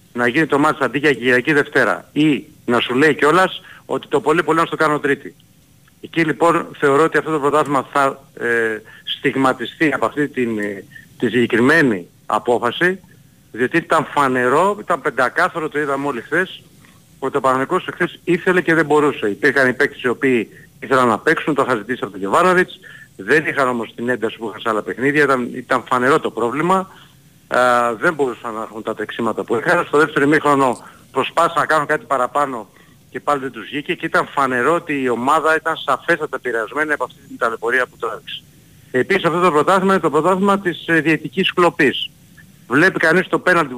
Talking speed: 180 wpm